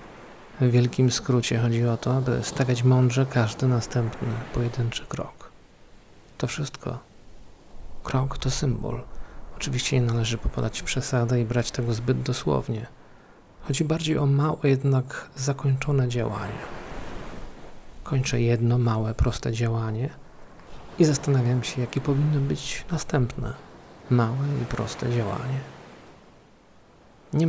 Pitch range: 115-135 Hz